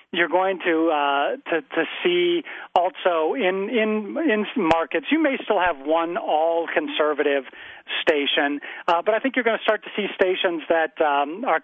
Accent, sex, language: American, male, English